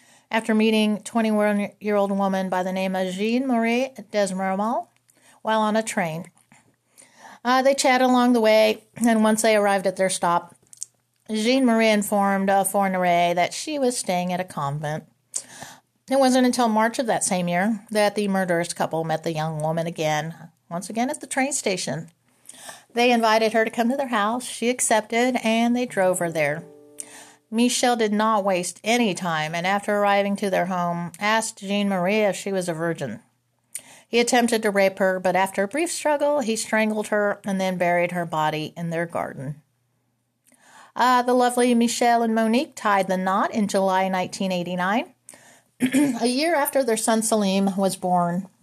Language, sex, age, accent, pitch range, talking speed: English, female, 40-59, American, 175-225 Hz, 165 wpm